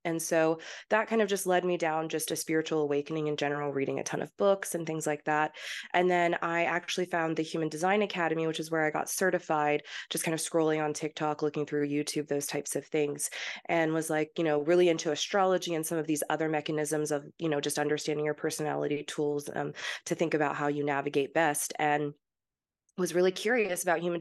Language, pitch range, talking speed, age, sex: English, 150-180 Hz, 220 wpm, 20-39, female